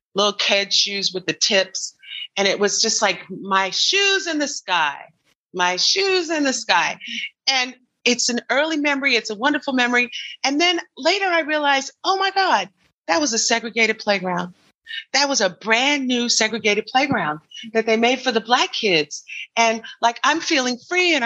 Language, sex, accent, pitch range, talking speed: English, female, American, 200-285 Hz, 180 wpm